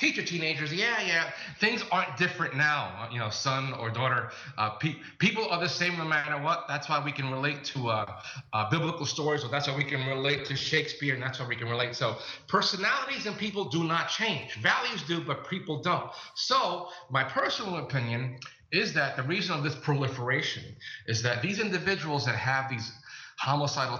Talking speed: 195 wpm